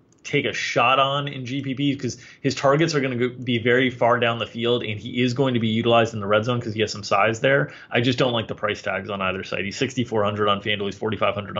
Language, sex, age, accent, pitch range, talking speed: English, male, 30-49, American, 110-135 Hz, 265 wpm